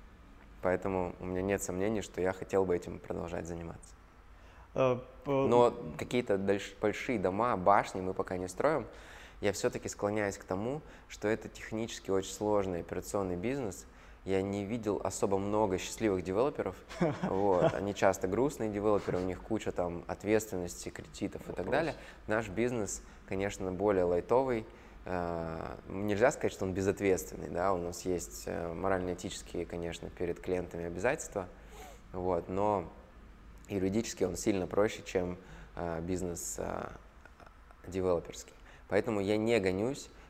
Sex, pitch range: male, 90-105 Hz